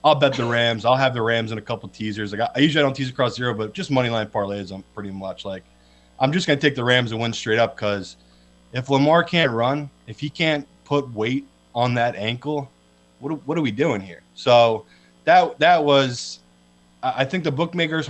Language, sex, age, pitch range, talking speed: English, male, 20-39, 105-135 Hz, 225 wpm